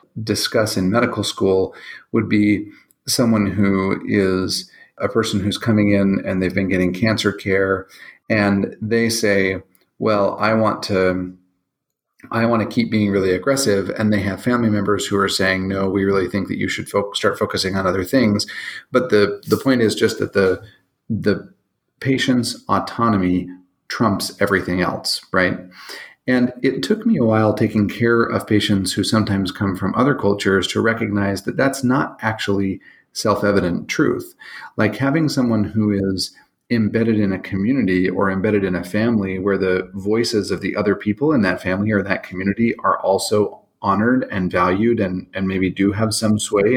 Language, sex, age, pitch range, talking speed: English, male, 40-59, 95-115 Hz, 170 wpm